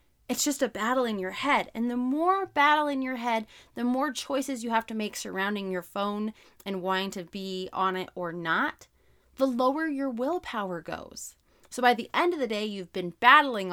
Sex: female